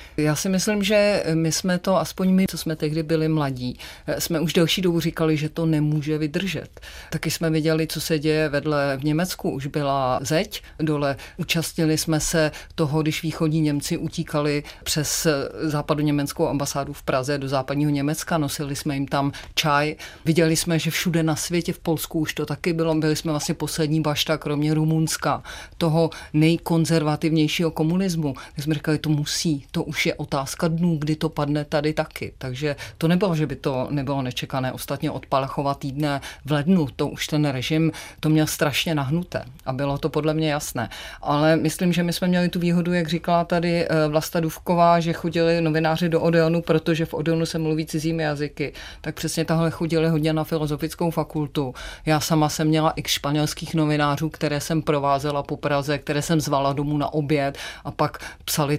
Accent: native